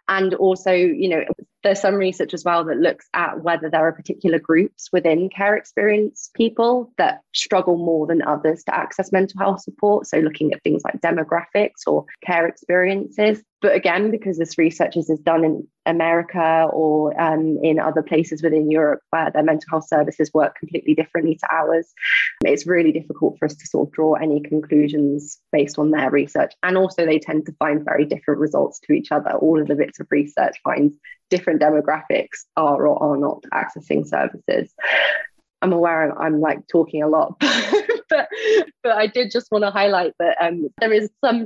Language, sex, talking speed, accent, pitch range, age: English, female, 190 wpm, British, 155-185 Hz, 20-39